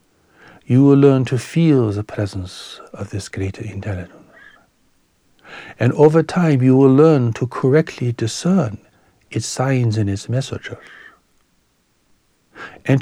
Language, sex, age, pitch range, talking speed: English, male, 60-79, 105-140 Hz, 120 wpm